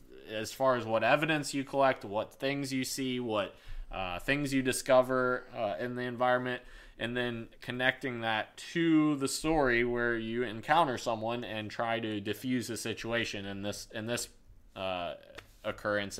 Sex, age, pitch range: male, 20-39, 105-130 Hz